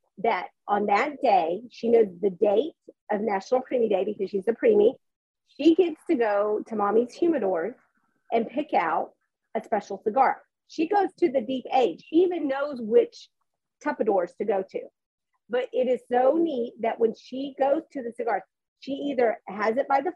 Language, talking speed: English, 180 wpm